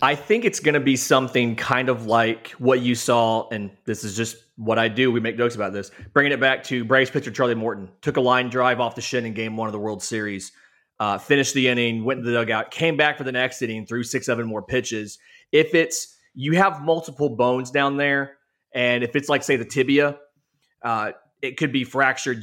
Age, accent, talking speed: 30-49, American, 230 wpm